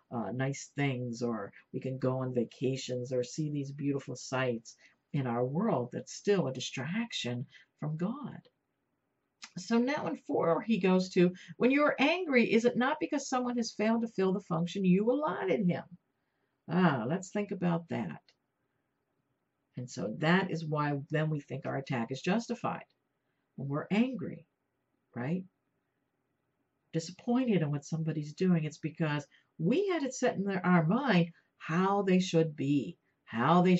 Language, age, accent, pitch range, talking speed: English, 50-69, American, 135-185 Hz, 155 wpm